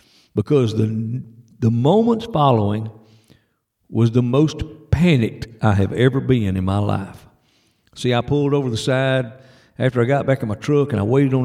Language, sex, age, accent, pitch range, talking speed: English, male, 50-69, American, 110-135 Hz, 175 wpm